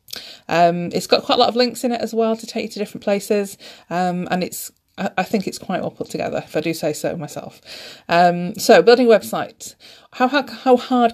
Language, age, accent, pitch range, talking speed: English, 30-49, British, 175-225 Hz, 225 wpm